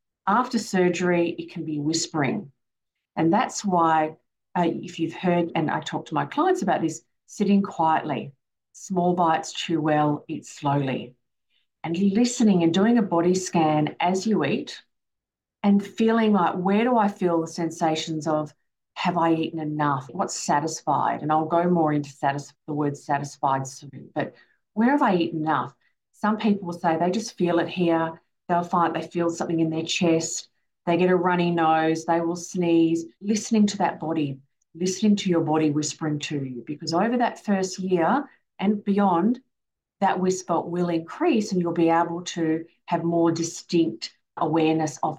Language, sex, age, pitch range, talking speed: English, female, 40-59, 155-185 Hz, 170 wpm